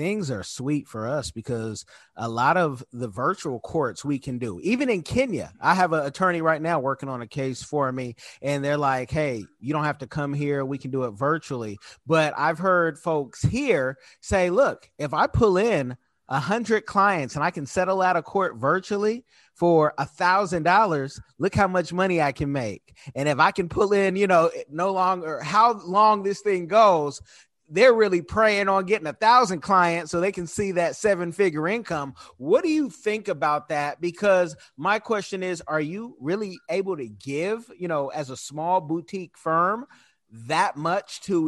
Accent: American